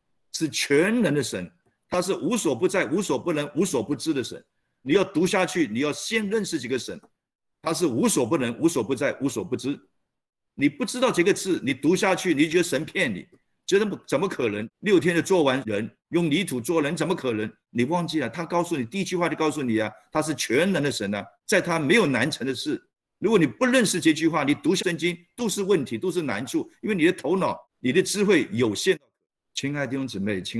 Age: 50-69